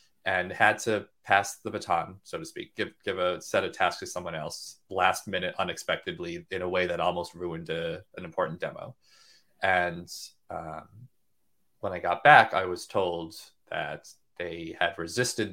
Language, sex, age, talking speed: English, male, 30-49, 170 wpm